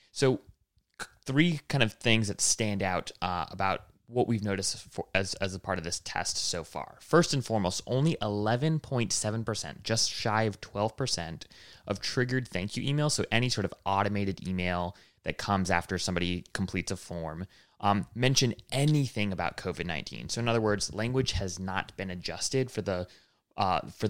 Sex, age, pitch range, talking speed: male, 20-39, 95-125 Hz, 170 wpm